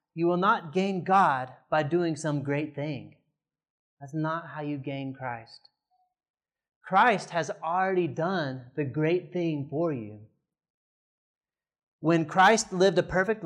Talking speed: 135 wpm